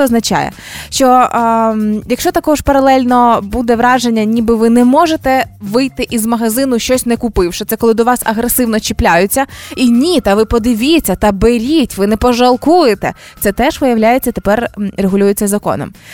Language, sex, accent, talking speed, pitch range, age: Ukrainian, female, native, 150 wpm, 220-270 Hz, 20-39